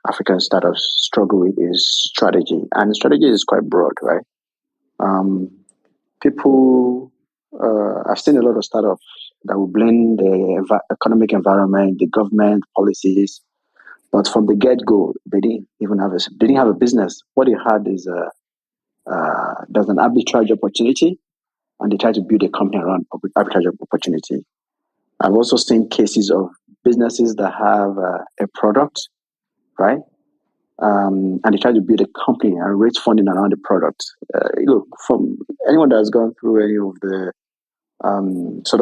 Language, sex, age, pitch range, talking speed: English, male, 30-49, 95-115 Hz, 160 wpm